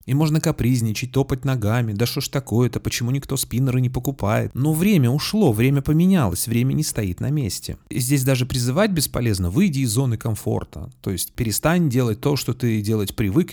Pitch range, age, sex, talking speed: 105-135 Hz, 30-49, male, 185 wpm